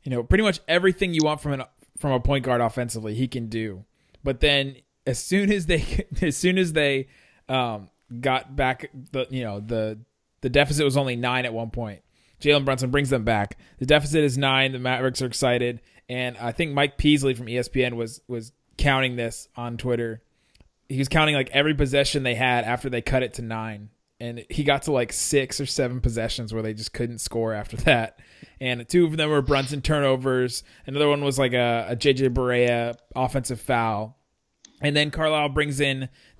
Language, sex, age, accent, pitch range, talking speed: English, male, 20-39, American, 115-145 Hz, 200 wpm